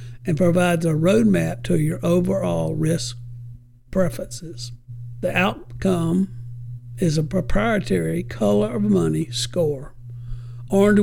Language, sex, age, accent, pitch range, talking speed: English, male, 60-79, American, 120-180 Hz, 105 wpm